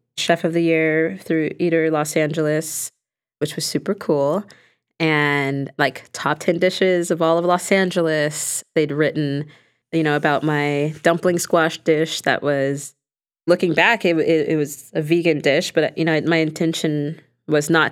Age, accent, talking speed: 20-39, American, 165 wpm